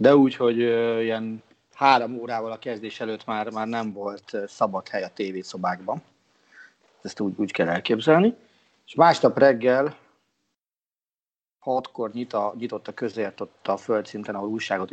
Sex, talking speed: male, 145 wpm